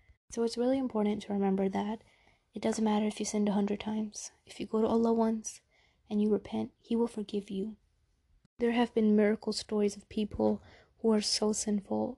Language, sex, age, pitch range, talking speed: English, female, 20-39, 200-225 Hz, 195 wpm